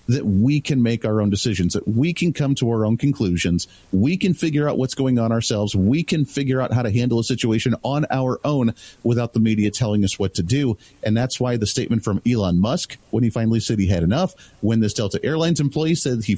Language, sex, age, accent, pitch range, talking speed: English, male, 40-59, American, 110-145 Hz, 240 wpm